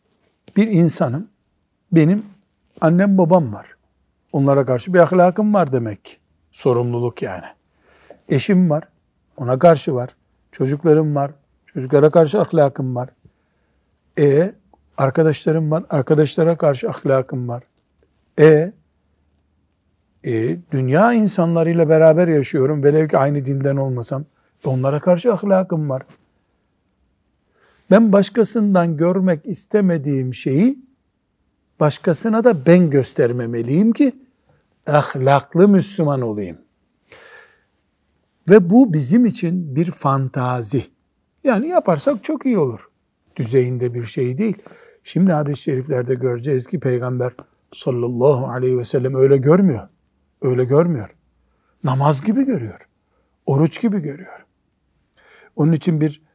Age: 60-79